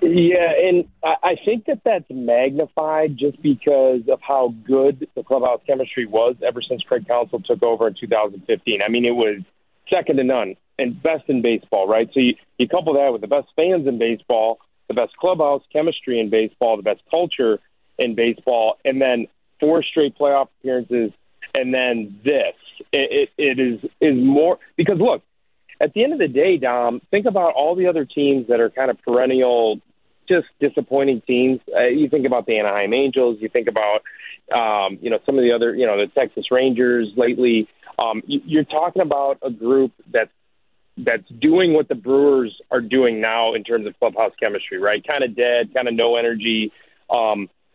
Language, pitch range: English, 120-155 Hz